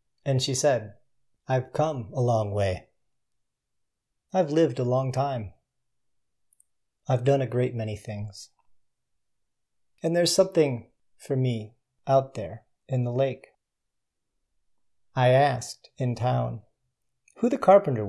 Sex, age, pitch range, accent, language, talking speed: male, 40-59, 110-140 Hz, American, English, 120 wpm